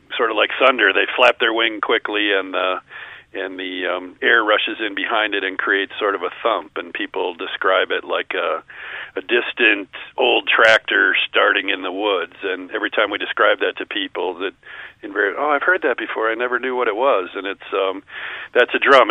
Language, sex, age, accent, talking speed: English, male, 50-69, American, 210 wpm